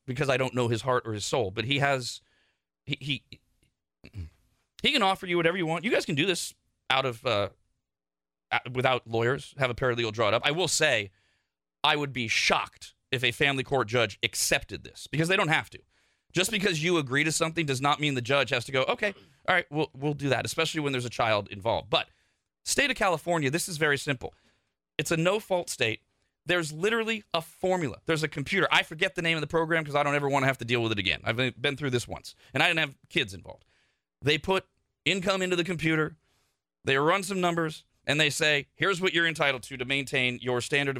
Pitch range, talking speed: 125-170 Hz, 225 wpm